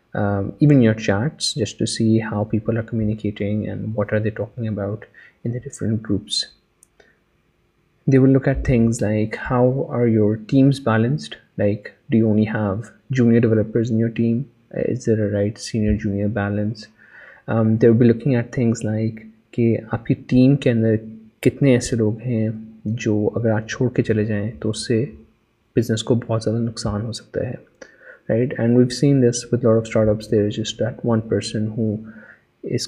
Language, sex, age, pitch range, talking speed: Urdu, male, 30-49, 110-120 Hz, 165 wpm